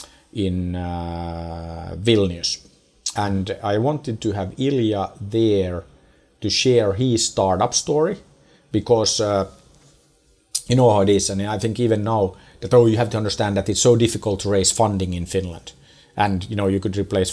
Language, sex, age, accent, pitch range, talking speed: English, male, 50-69, Finnish, 95-120 Hz, 165 wpm